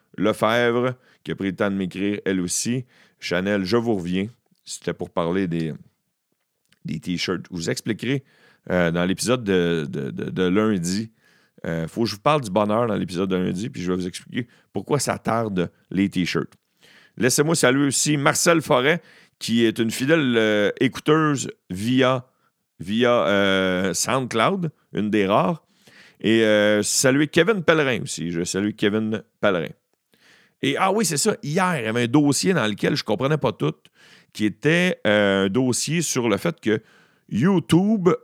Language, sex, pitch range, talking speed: French, male, 100-150 Hz, 175 wpm